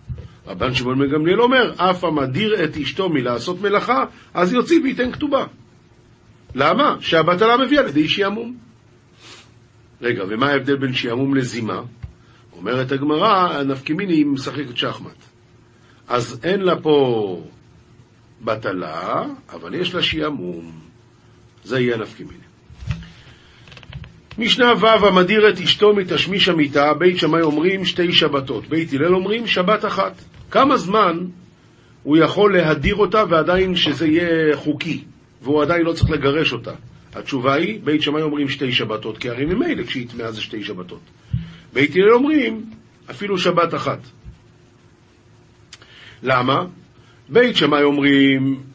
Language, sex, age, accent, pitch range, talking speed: Hebrew, male, 50-69, native, 120-170 Hz, 125 wpm